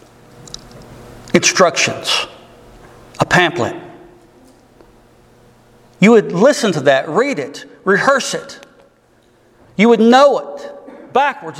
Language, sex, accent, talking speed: English, male, American, 90 wpm